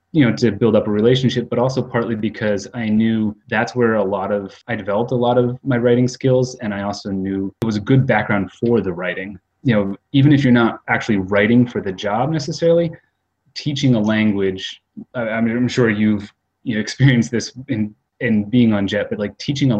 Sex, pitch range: male, 95-120 Hz